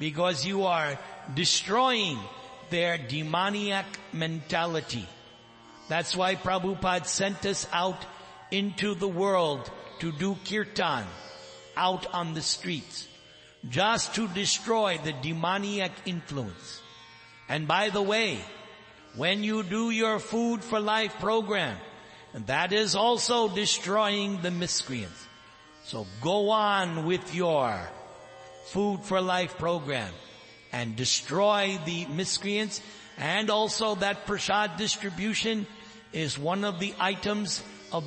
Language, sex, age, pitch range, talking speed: English, male, 60-79, 155-210 Hz, 110 wpm